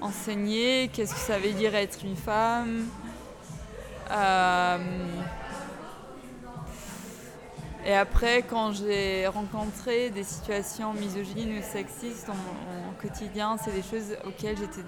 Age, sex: 20-39, female